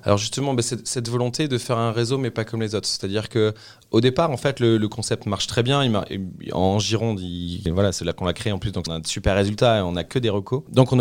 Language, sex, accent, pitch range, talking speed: French, male, French, 95-120 Hz, 305 wpm